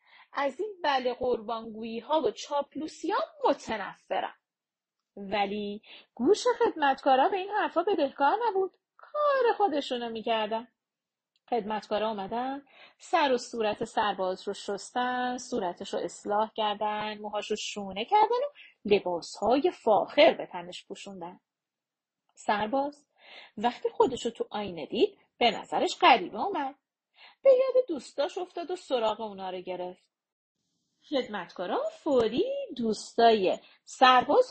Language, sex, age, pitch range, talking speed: Persian, female, 30-49, 220-340 Hz, 115 wpm